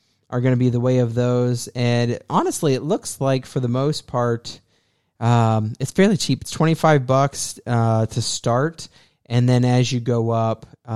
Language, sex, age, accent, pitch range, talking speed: English, male, 30-49, American, 115-145 Hz, 170 wpm